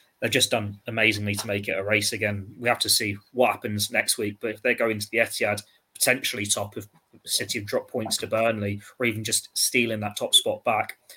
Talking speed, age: 225 wpm, 20-39